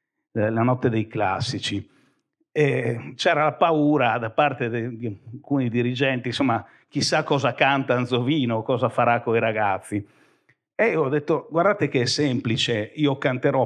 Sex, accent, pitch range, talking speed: male, native, 120-150 Hz, 145 wpm